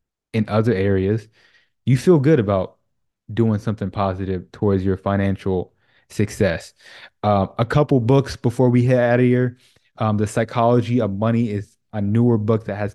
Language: English